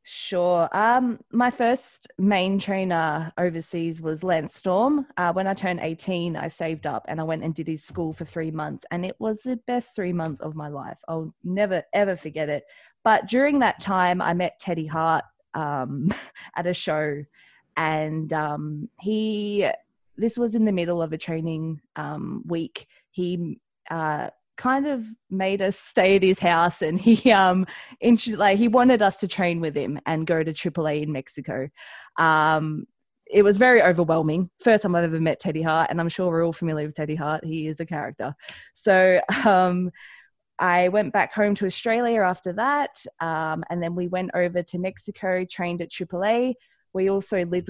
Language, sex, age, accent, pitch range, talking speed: English, female, 20-39, Australian, 160-205 Hz, 180 wpm